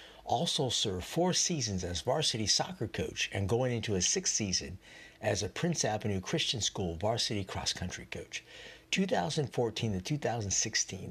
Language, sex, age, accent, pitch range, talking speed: English, male, 50-69, American, 95-130 Hz, 140 wpm